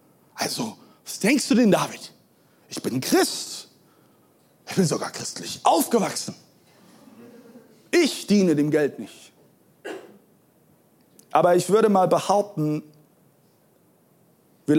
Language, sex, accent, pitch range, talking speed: German, male, German, 135-210 Hz, 100 wpm